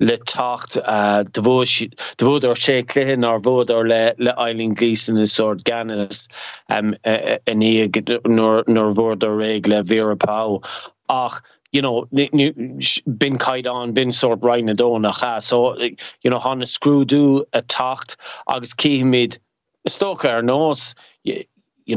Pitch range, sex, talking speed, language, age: 115-130 Hz, male, 140 wpm, English, 20-39